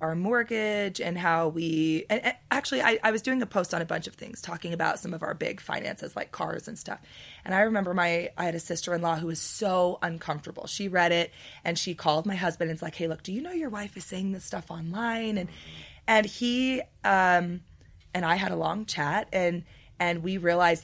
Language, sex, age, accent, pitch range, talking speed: English, female, 20-39, American, 165-215 Hz, 220 wpm